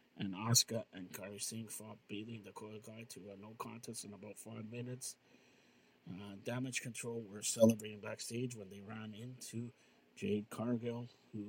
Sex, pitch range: male, 105-120 Hz